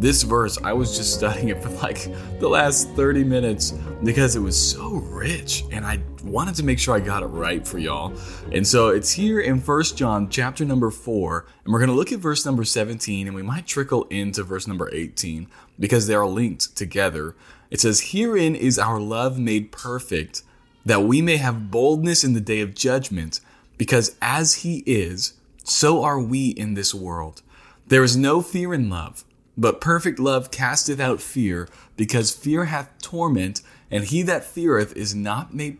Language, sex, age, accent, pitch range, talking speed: English, male, 20-39, American, 95-135 Hz, 190 wpm